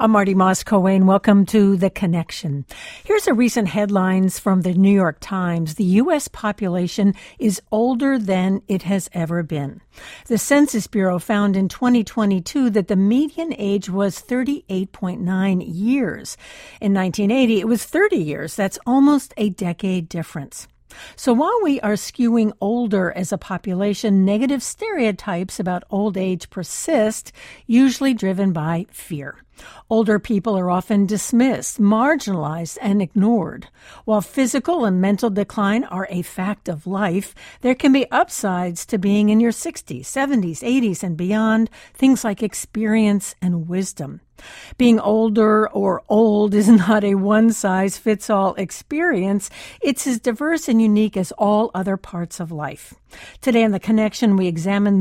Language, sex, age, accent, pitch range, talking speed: English, female, 60-79, American, 190-235 Hz, 145 wpm